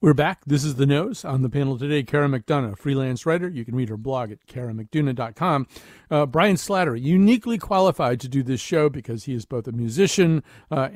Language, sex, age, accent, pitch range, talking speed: English, male, 50-69, American, 120-150 Hz, 205 wpm